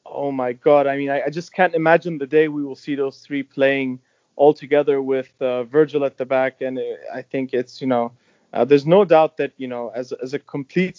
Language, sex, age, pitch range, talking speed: English, male, 30-49, 125-160 Hz, 235 wpm